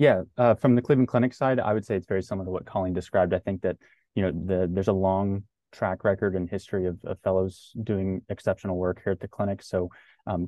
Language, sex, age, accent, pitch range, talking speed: English, male, 20-39, American, 90-105 Hz, 240 wpm